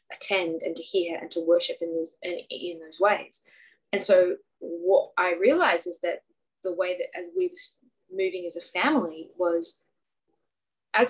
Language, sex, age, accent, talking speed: English, female, 20-39, Australian, 170 wpm